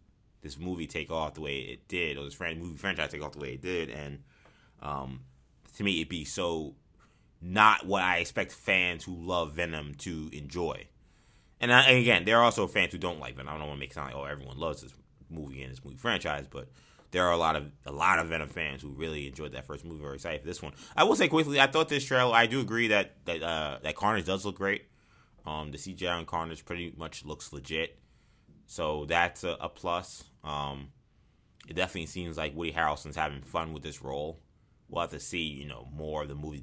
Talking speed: 230 wpm